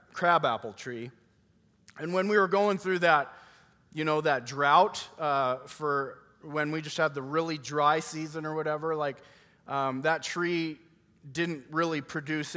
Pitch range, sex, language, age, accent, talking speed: 130-160 Hz, male, English, 30-49, American, 160 wpm